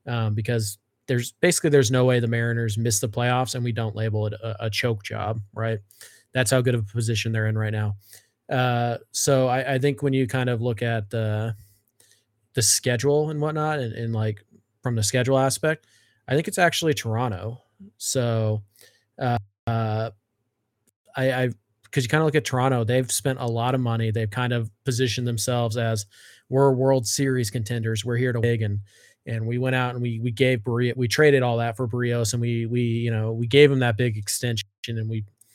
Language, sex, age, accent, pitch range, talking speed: English, male, 20-39, American, 110-130 Hz, 195 wpm